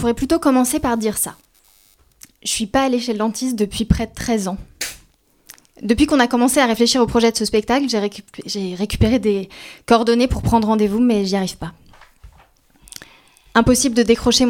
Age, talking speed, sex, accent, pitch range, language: 20-39, 190 wpm, female, French, 215-250 Hz, French